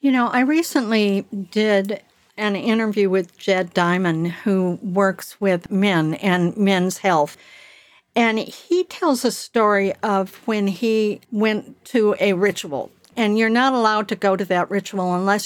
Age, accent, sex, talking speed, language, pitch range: 60-79, American, female, 150 wpm, English, 190-230 Hz